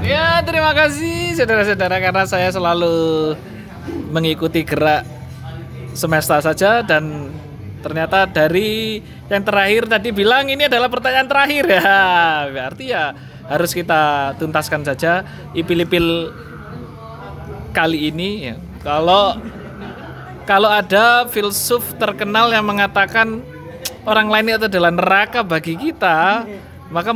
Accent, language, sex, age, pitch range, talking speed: native, Indonesian, male, 20-39, 160-215 Hz, 105 wpm